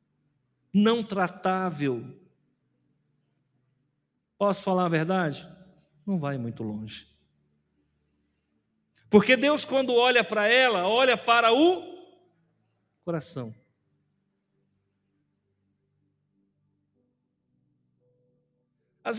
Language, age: Portuguese, 50-69